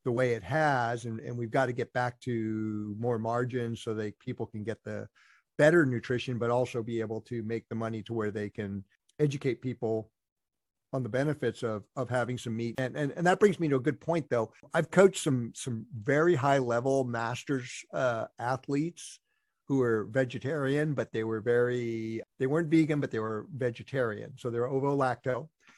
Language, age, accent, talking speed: English, 50-69, American, 195 wpm